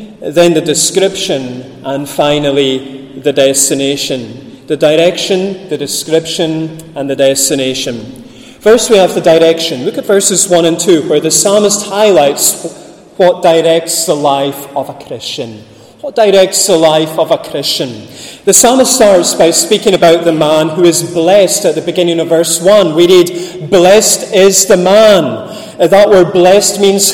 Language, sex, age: English, male, 30-49